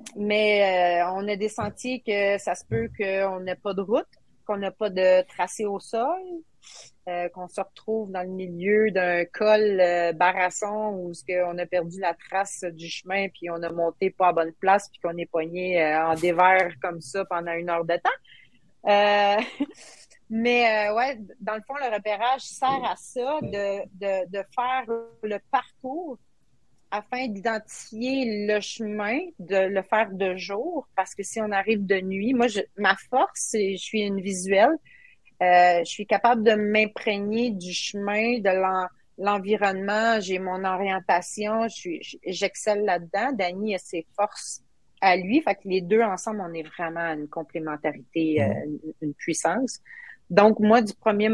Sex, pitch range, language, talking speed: female, 180-220 Hz, French, 175 wpm